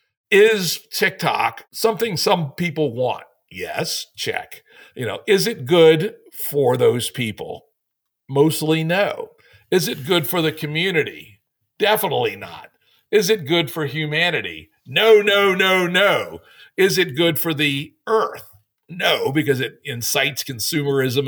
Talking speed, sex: 130 wpm, male